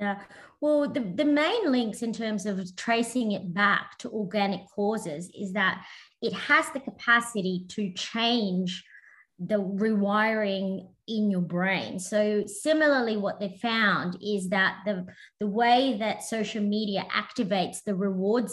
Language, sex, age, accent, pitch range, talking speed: English, female, 20-39, Australian, 195-240 Hz, 145 wpm